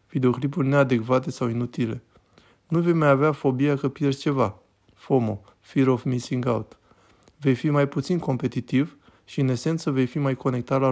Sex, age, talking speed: male, 20-39, 165 wpm